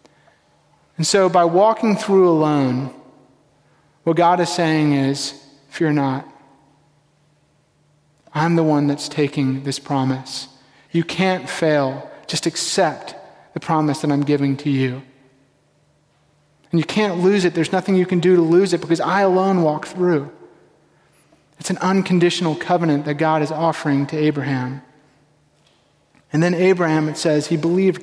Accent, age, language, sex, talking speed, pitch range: American, 30-49, English, male, 145 wpm, 145-175 Hz